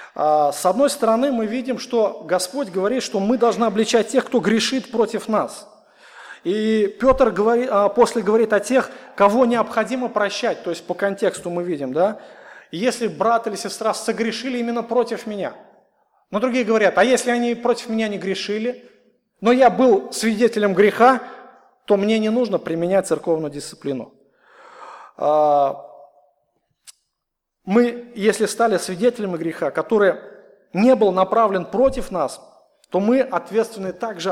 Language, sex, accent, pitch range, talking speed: Russian, male, native, 175-235 Hz, 135 wpm